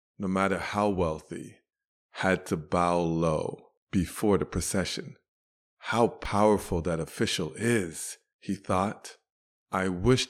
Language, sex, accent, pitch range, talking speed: English, male, American, 90-110 Hz, 115 wpm